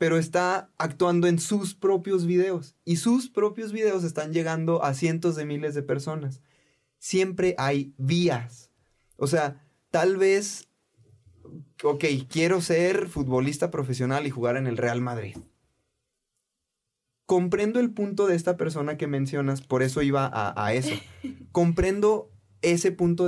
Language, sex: Spanish, male